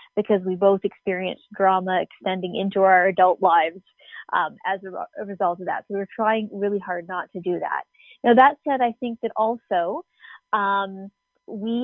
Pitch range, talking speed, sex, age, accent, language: 185-220 Hz, 175 wpm, female, 20-39, American, English